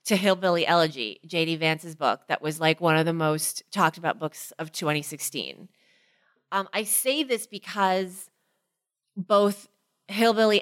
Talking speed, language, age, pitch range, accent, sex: 140 wpm, English, 30-49, 175-215 Hz, American, female